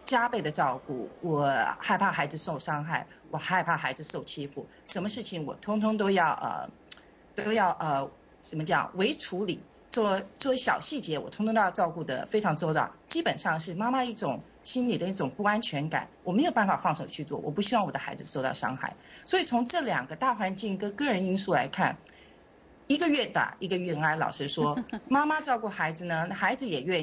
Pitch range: 155-220 Hz